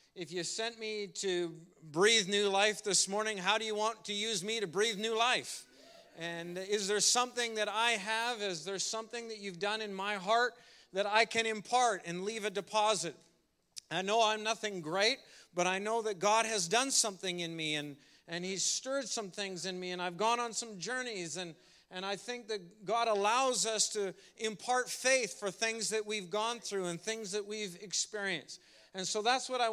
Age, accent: 40-59, American